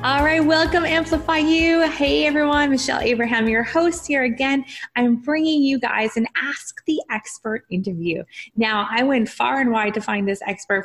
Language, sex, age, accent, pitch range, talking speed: English, female, 20-39, American, 200-265 Hz, 175 wpm